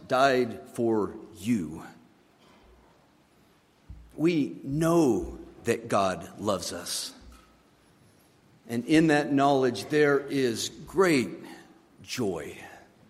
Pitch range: 105-125 Hz